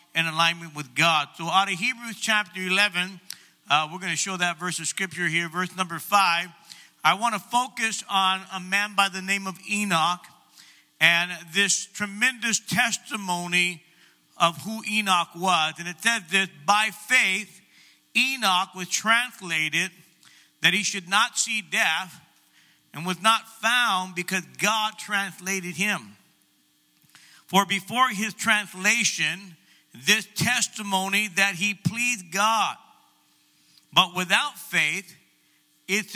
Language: English